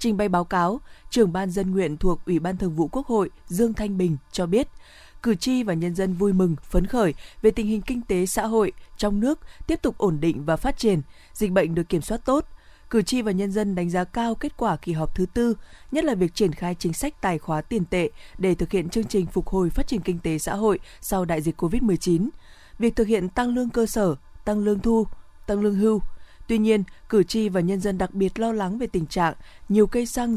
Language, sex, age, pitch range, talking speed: Vietnamese, female, 20-39, 175-220 Hz, 245 wpm